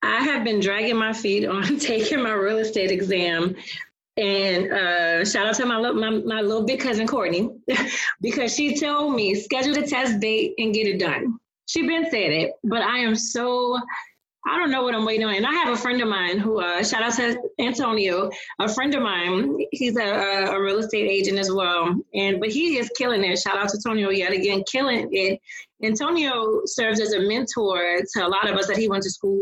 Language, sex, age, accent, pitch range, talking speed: English, female, 30-49, American, 200-255 Hz, 210 wpm